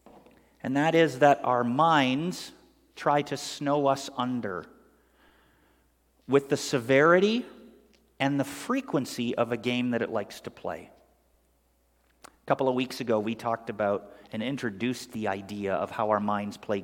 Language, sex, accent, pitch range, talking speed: English, male, American, 120-160 Hz, 150 wpm